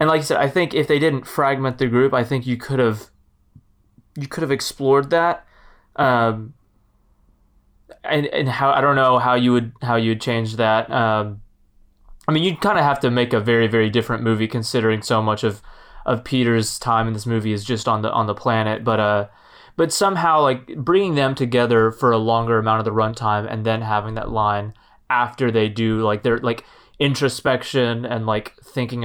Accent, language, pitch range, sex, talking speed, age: American, English, 110-135 Hz, male, 200 wpm, 20-39